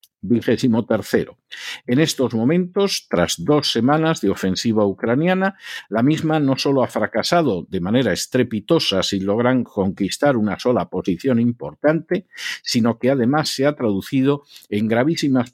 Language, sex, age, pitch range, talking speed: Spanish, male, 50-69, 100-145 Hz, 130 wpm